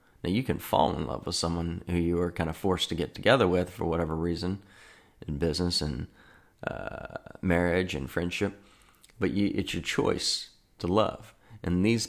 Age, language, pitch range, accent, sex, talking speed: 40-59, English, 85-100 Hz, American, male, 180 wpm